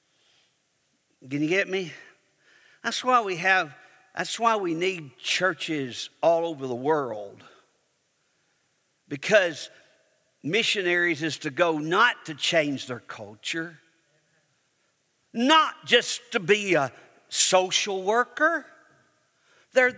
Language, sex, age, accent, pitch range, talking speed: English, male, 50-69, American, 145-215 Hz, 105 wpm